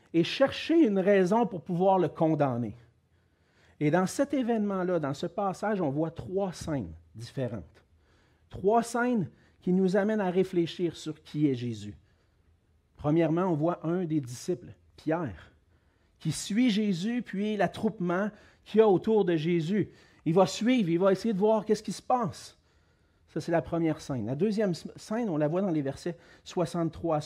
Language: French